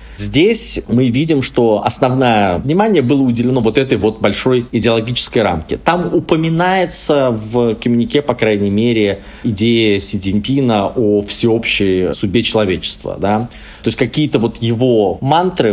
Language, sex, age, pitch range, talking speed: Russian, male, 30-49, 110-140 Hz, 135 wpm